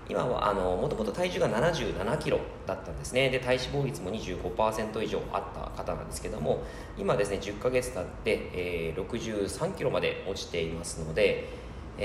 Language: Japanese